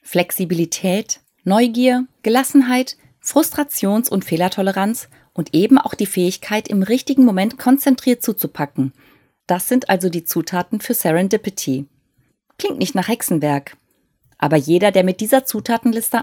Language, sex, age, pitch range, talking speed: German, female, 30-49, 165-245 Hz, 120 wpm